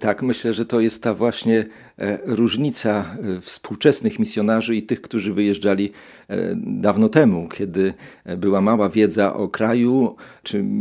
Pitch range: 105-140 Hz